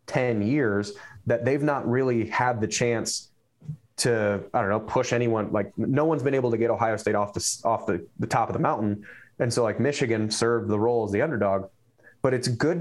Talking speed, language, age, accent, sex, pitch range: 215 wpm, English, 30-49, American, male, 110-135 Hz